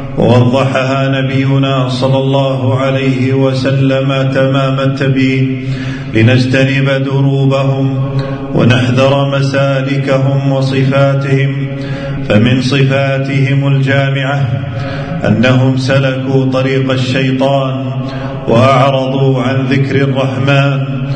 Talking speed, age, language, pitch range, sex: 70 wpm, 40-59, Arabic, 130-140 Hz, male